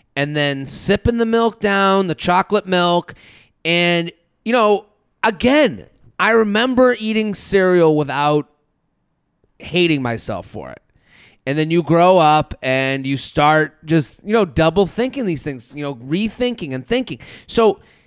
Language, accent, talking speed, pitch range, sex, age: English, American, 145 wpm, 150-225 Hz, male, 30-49